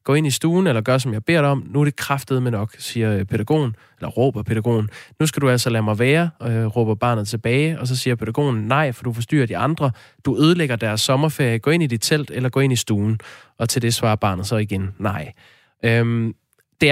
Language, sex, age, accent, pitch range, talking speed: Danish, male, 20-39, native, 110-135 Hz, 230 wpm